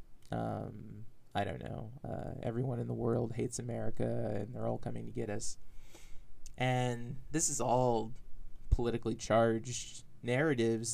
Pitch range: 115-135 Hz